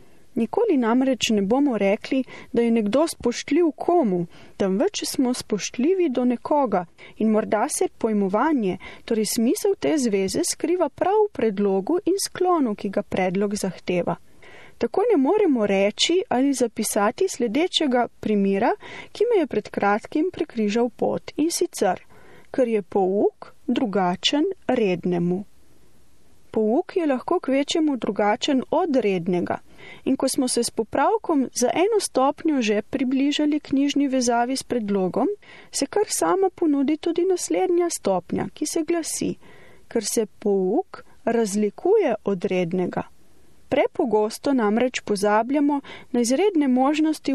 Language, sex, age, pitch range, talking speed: Italian, female, 30-49, 210-320 Hz, 130 wpm